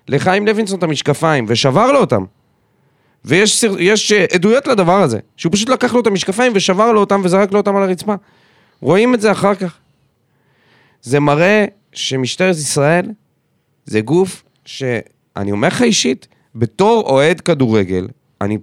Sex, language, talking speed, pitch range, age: male, Hebrew, 140 wpm, 140-195 Hz, 30-49